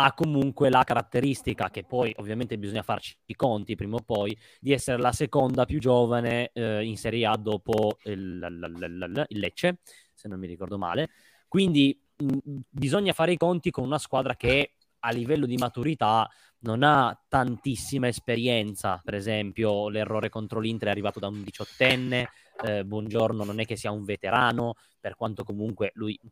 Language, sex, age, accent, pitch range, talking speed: Italian, male, 20-39, native, 105-130 Hz, 160 wpm